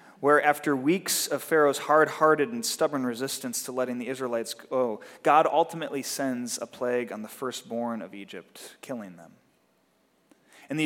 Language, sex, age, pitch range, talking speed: English, male, 30-49, 115-155 Hz, 155 wpm